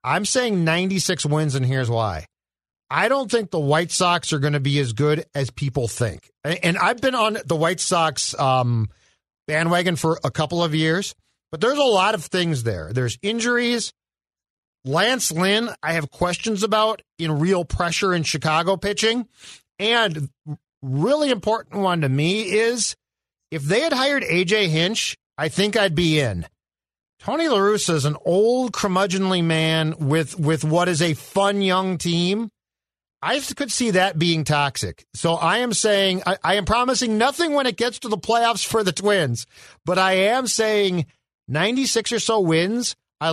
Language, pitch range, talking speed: English, 150-215 Hz, 170 wpm